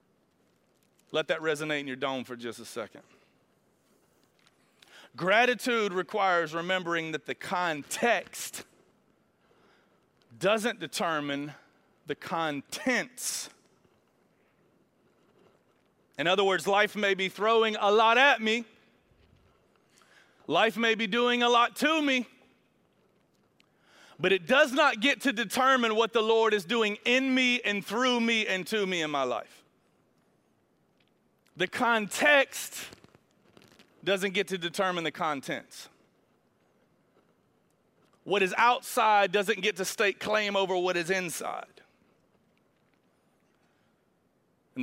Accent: American